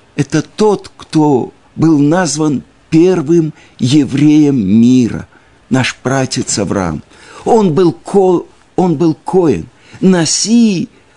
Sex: male